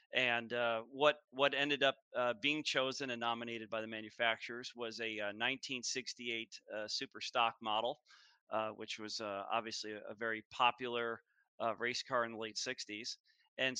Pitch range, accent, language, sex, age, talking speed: 115-135 Hz, American, English, male, 40-59, 165 wpm